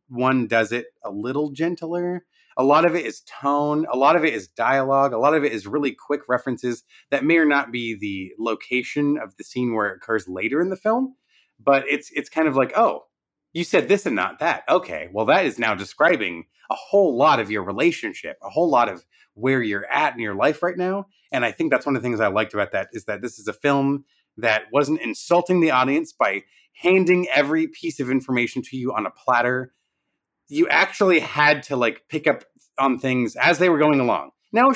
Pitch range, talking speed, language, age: 125-190 Hz, 225 wpm, English, 30-49